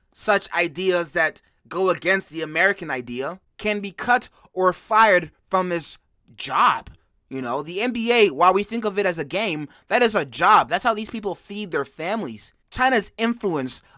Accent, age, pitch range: American, 20-39, 170-215 Hz